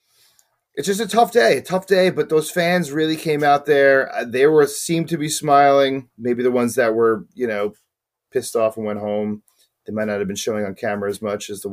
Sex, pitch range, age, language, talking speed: male, 110-170 Hz, 30-49, English, 230 wpm